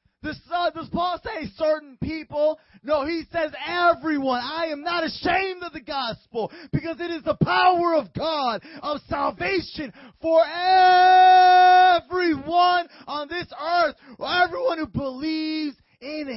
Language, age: English, 20-39